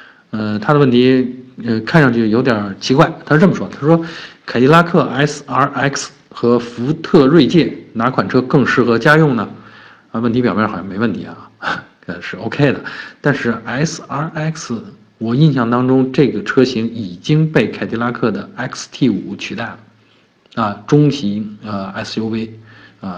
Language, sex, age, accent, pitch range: Chinese, male, 50-69, native, 110-140 Hz